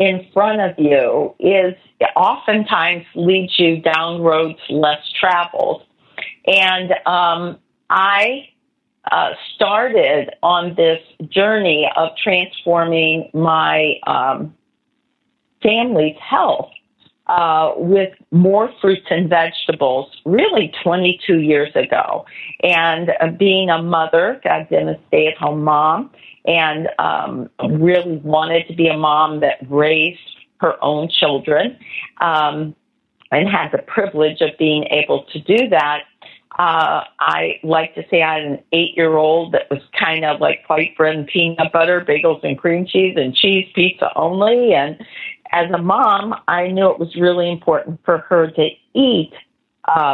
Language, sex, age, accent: English, female, 40-59, American